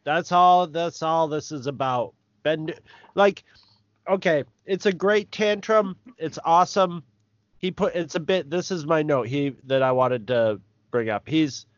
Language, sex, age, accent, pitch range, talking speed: English, male, 30-49, American, 115-160 Hz, 170 wpm